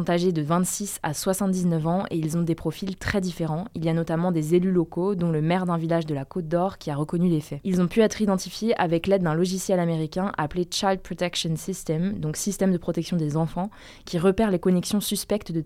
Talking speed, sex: 230 wpm, female